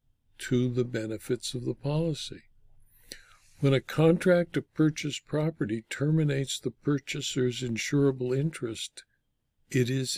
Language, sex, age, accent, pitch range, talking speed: English, male, 60-79, American, 125-165 Hz, 110 wpm